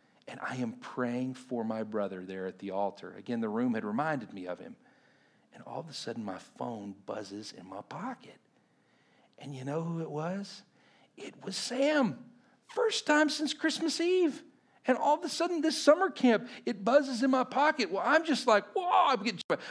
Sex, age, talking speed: male, 50-69, 195 wpm